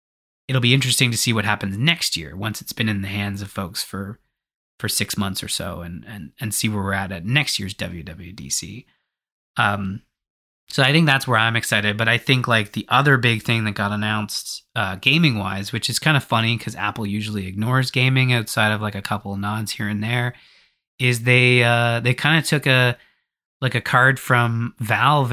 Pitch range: 100-120 Hz